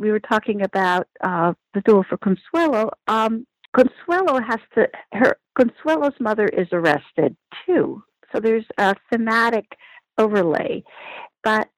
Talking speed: 125 wpm